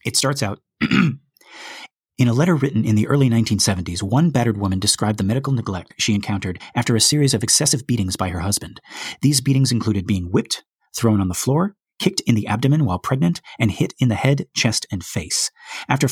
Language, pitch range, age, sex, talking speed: English, 105-135 Hz, 30-49, male, 195 wpm